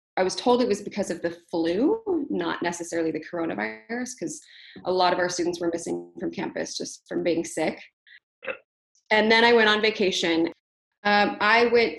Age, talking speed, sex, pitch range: 20-39, 180 wpm, female, 165-200 Hz